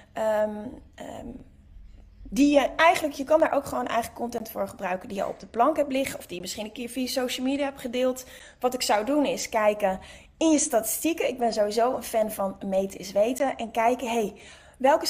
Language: Dutch